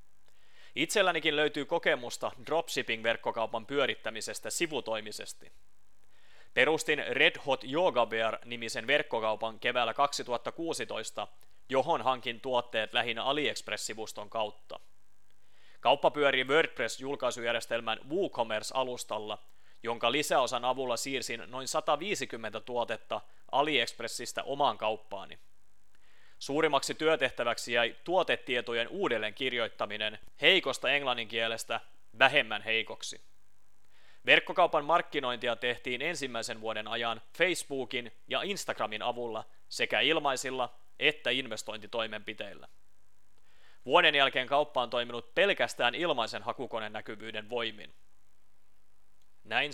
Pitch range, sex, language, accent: 110-130 Hz, male, Finnish, native